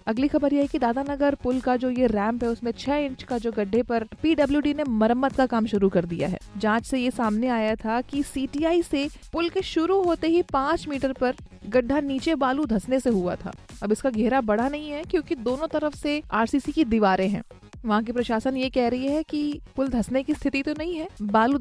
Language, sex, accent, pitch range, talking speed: Hindi, female, native, 225-280 Hz, 230 wpm